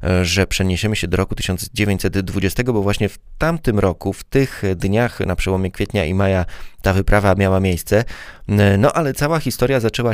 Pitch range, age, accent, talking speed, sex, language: 95-105 Hz, 20-39, native, 165 wpm, male, Polish